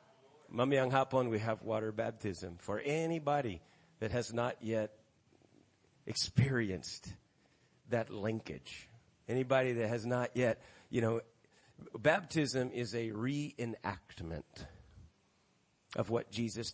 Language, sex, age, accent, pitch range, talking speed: English, male, 50-69, American, 105-135 Hz, 95 wpm